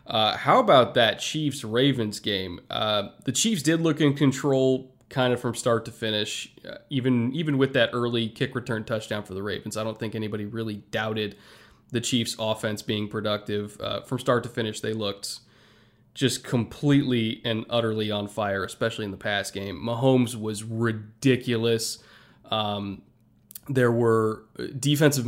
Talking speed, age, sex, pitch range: 160 wpm, 20-39, male, 110-130 Hz